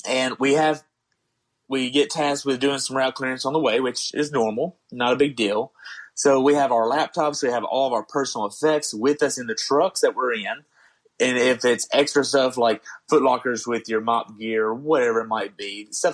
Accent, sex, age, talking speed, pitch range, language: American, male, 30-49, 215 wpm, 115-145 Hz, English